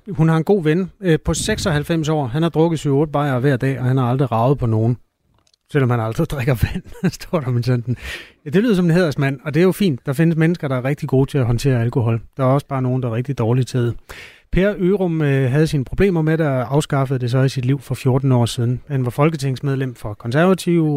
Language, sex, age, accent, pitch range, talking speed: Danish, male, 30-49, native, 125-155 Hz, 245 wpm